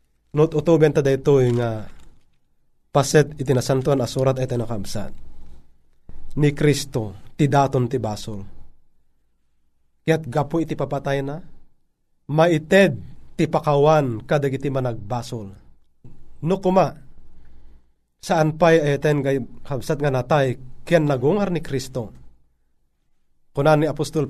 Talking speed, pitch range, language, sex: 105 wpm, 115-165 Hz, Filipino, male